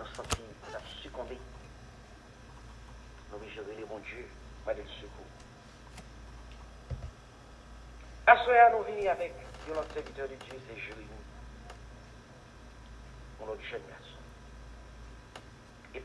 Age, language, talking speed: 50-69, English, 100 wpm